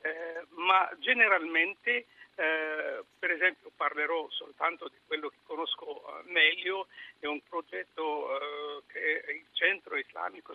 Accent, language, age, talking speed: native, Italian, 50-69, 120 wpm